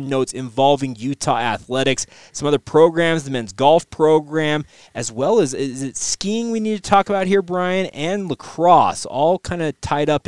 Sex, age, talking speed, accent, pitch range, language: male, 20-39, 180 wpm, American, 130-160 Hz, English